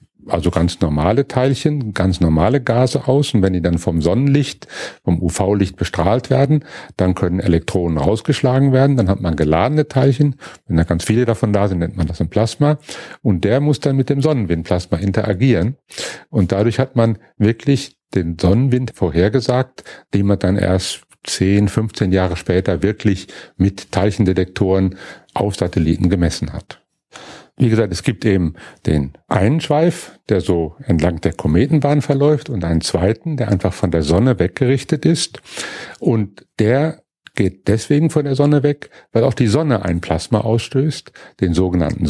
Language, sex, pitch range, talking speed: German, male, 90-130 Hz, 160 wpm